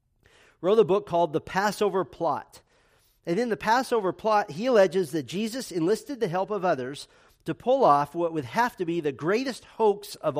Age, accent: 40-59, American